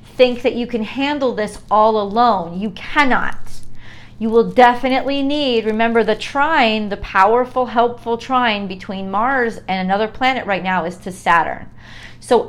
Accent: American